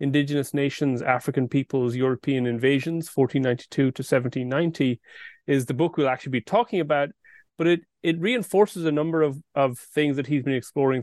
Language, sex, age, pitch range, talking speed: English, male, 30-49, 120-145 Hz, 165 wpm